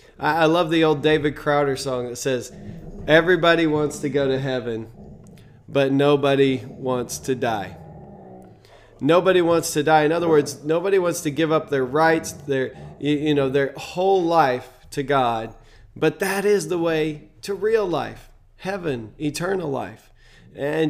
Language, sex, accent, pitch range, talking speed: English, male, American, 135-170 Hz, 150 wpm